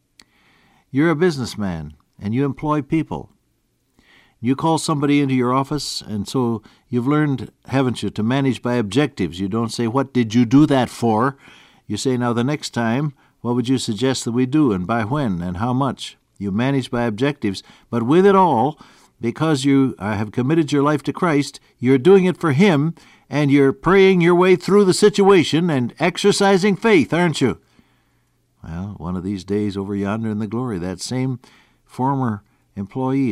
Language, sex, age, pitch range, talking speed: English, male, 60-79, 100-140 Hz, 180 wpm